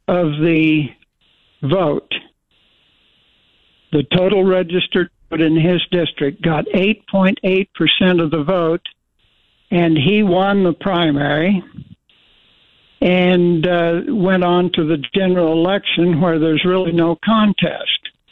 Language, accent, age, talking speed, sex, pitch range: English, American, 60-79, 110 wpm, male, 165-195 Hz